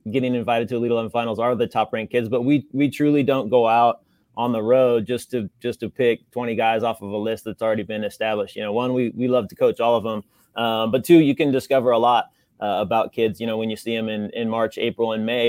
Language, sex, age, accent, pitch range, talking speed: English, male, 30-49, American, 110-125 Hz, 270 wpm